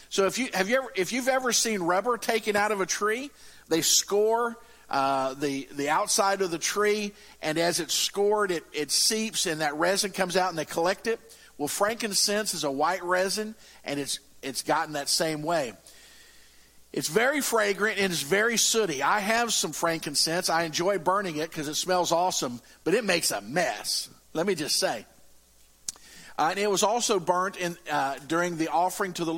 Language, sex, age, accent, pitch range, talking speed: English, male, 50-69, American, 155-210 Hz, 195 wpm